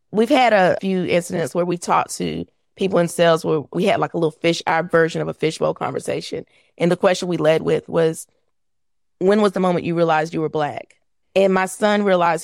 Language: English